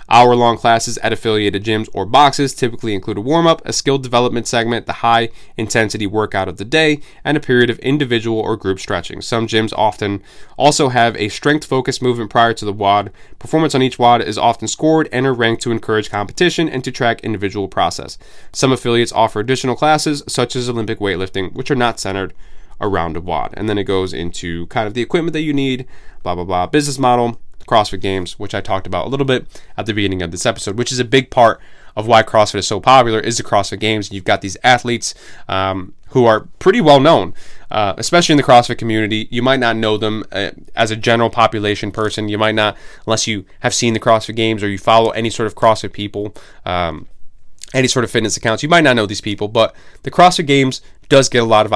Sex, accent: male, American